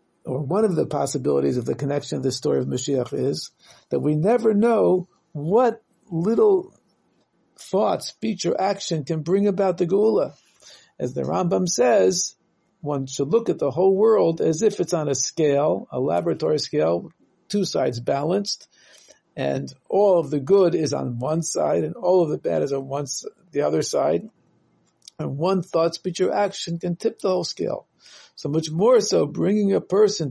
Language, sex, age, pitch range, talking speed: English, male, 60-79, 145-195 Hz, 175 wpm